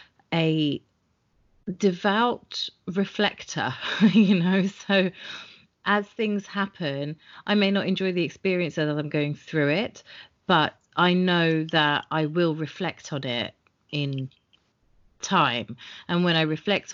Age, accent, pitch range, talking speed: 30-49, British, 145-175 Hz, 125 wpm